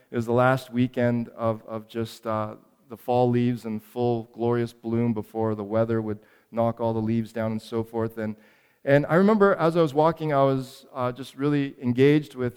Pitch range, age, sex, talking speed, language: 125-175 Hz, 40-59, male, 205 wpm, English